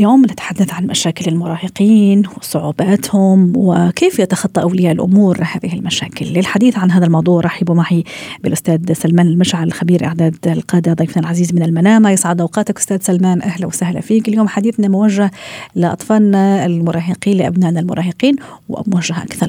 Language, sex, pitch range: Arabic, female, 170-210 Hz